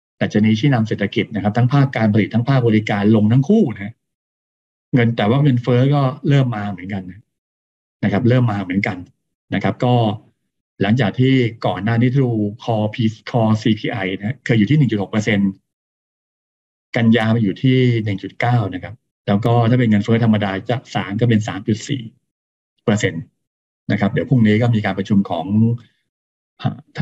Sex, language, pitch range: male, Thai, 100-120 Hz